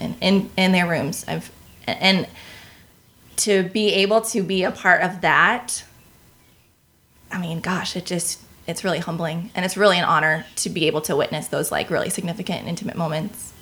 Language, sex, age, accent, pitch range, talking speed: English, female, 20-39, American, 165-200 Hz, 170 wpm